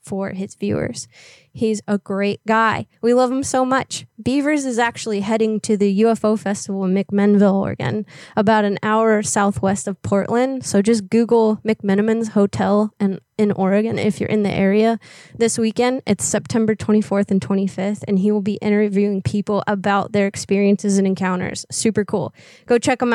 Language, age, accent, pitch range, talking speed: English, 20-39, American, 195-225 Hz, 165 wpm